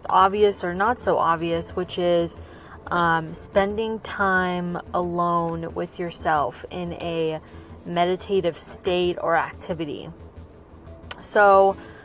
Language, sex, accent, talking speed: English, female, American, 100 wpm